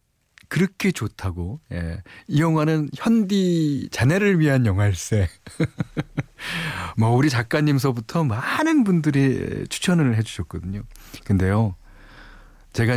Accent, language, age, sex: native, Korean, 40-59, male